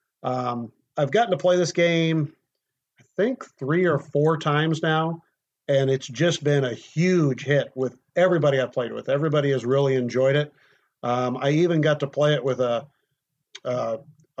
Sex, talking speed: male, 175 wpm